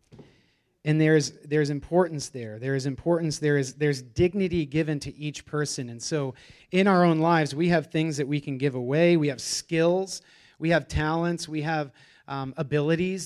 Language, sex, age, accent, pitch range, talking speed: English, male, 30-49, American, 140-165 Hz, 170 wpm